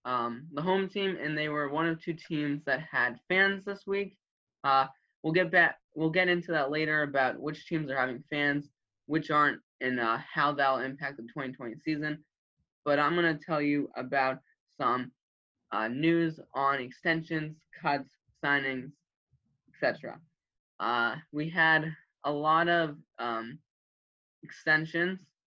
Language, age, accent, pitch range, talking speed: English, 10-29, American, 130-160 Hz, 155 wpm